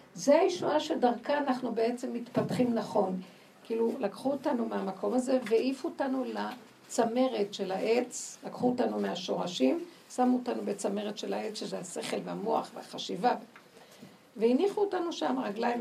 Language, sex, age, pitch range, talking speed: Hebrew, female, 50-69, 200-260 Hz, 120 wpm